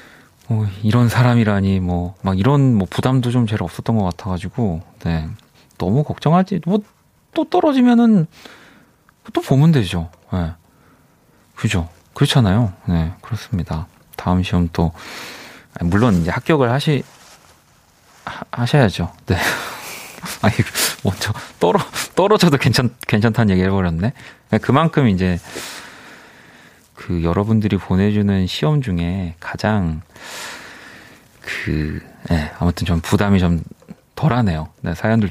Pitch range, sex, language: 90-130 Hz, male, Korean